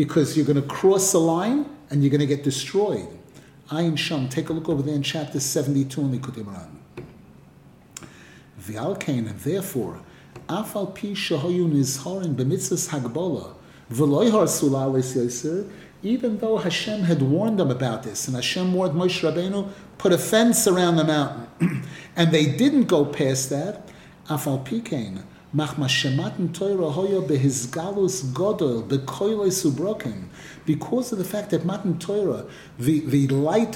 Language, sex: English, male